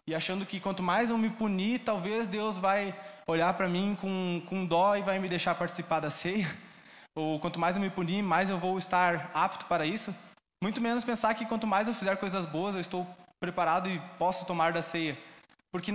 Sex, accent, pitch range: male, Brazilian, 170-205 Hz